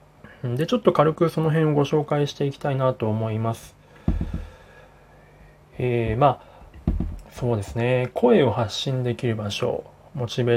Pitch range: 115-145 Hz